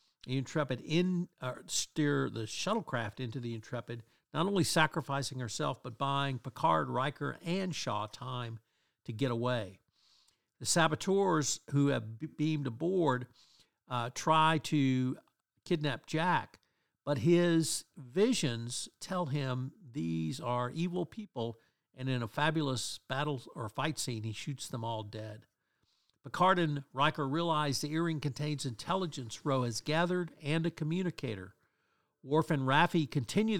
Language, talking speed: English, 130 wpm